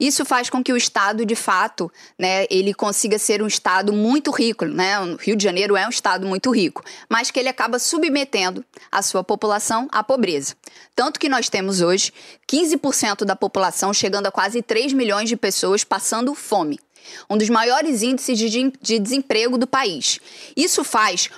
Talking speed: 180 wpm